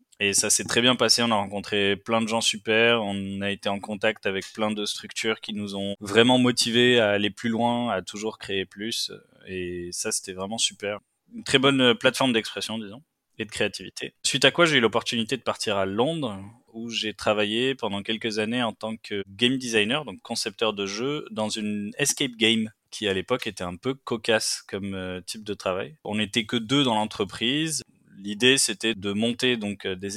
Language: French